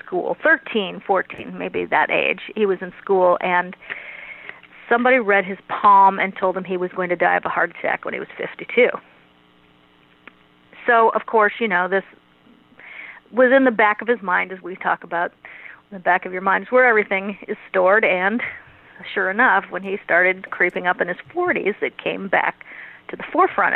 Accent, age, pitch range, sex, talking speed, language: American, 40-59, 185-225 Hz, female, 190 wpm, English